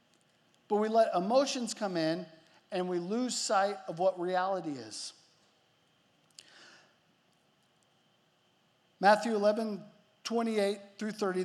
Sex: male